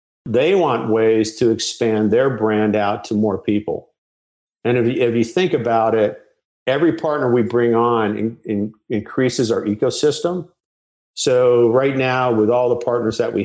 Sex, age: male, 50-69